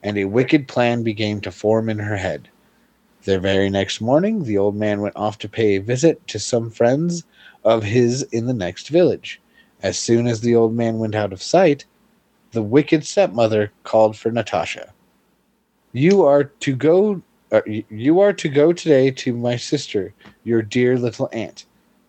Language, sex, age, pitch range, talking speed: English, male, 30-49, 105-140 Hz, 175 wpm